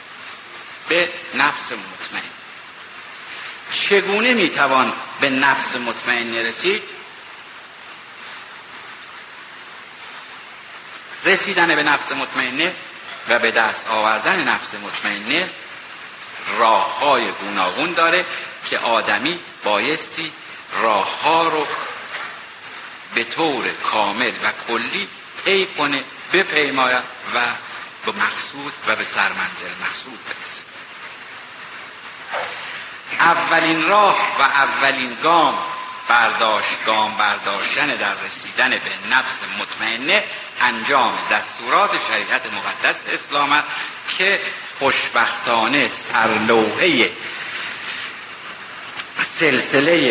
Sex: male